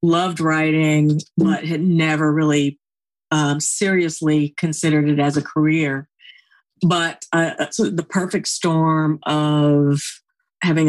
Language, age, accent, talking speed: English, 50-69, American, 110 wpm